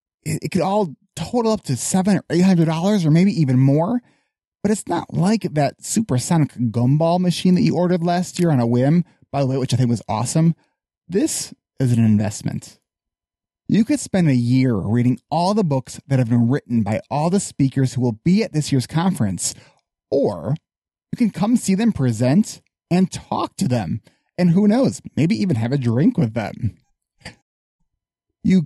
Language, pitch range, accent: English, 120-170 Hz, American